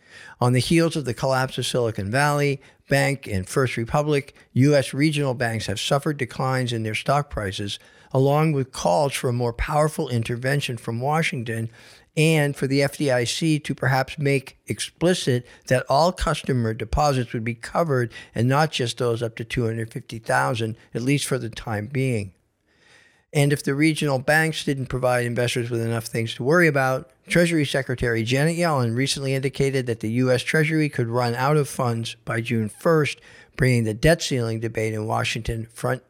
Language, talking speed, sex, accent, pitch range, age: English, 170 wpm, male, American, 115-145 Hz, 50-69